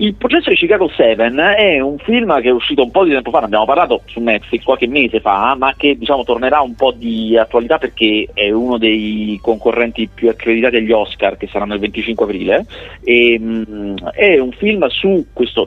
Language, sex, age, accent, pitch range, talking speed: Italian, male, 40-59, native, 110-140 Hz, 205 wpm